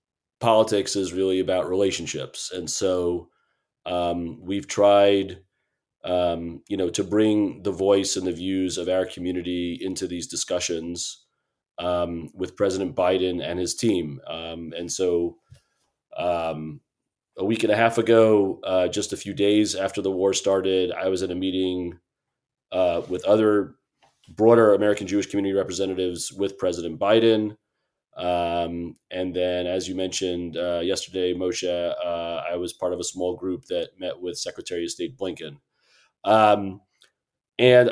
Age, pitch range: 30-49, 90-105 Hz